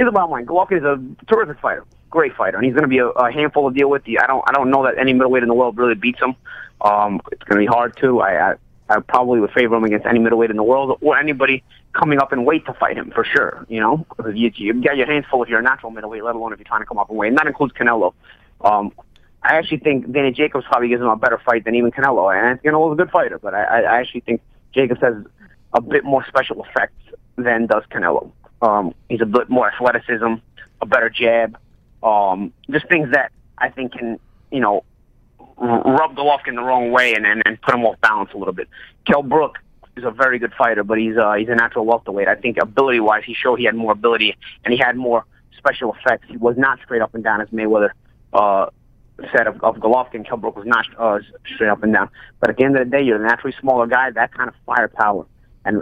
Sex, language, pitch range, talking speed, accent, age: male, English, 115-135 Hz, 250 wpm, American, 30-49